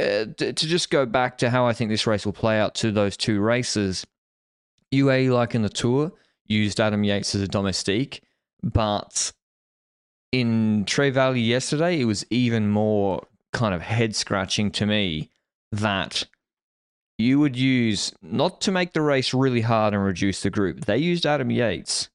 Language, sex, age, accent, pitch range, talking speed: English, male, 20-39, Australian, 100-125 Hz, 170 wpm